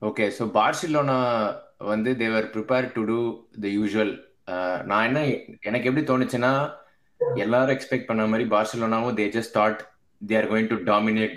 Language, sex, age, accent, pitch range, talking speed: Tamil, male, 20-39, native, 105-120 Hz, 160 wpm